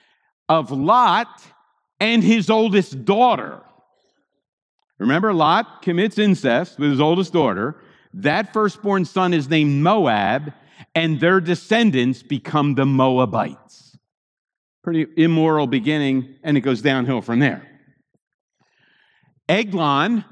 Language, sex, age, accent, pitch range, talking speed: English, male, 50-69, American, 155-220 Hz, 105 wpm